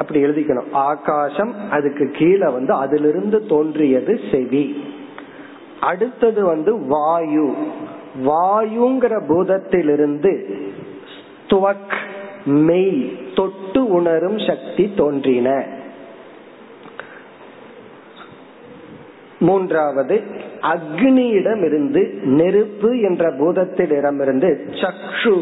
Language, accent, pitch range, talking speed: Tamil, native, 145-205 Hz, 45 wpm